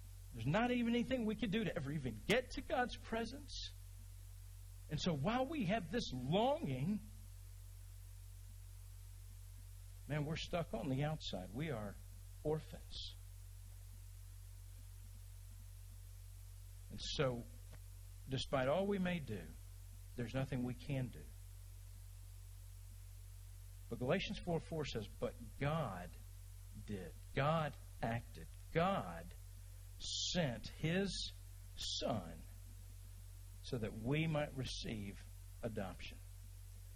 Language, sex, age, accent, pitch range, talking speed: English, male, 50-69, American, 95-140 Hz, 100 wpm